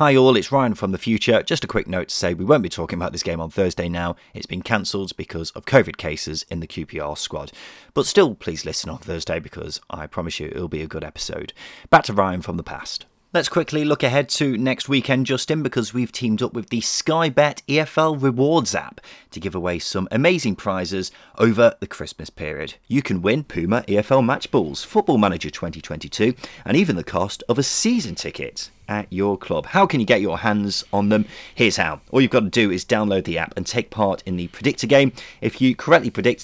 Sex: male